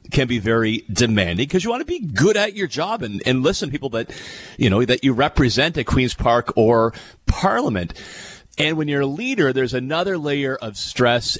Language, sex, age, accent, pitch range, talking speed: English, male, 40-59, American, 100-125 Hz, 205 wpm